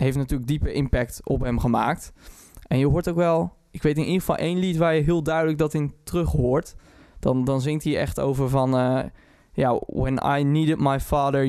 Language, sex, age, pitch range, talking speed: Dutch, male, 20-39, 135-160 Hz, 210 wpm